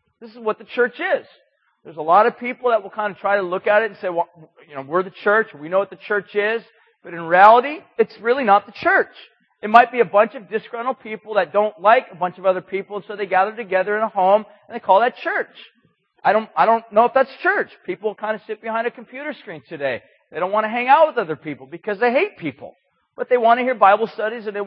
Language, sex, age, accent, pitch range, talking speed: English, male, 40-59, American, 190-235 Hz, 270 wpm